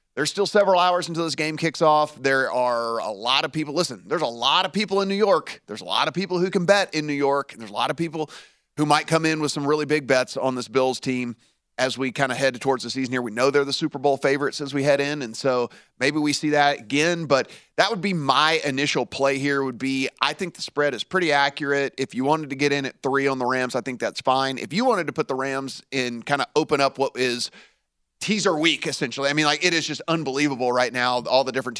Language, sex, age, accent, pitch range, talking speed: English, male, 30-49, American, 130-150 Hz, 265 wpm